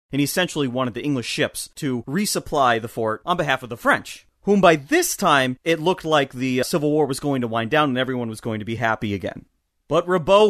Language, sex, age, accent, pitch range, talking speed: English, male, 30-49, American, 125-165 Hz, 235 wpm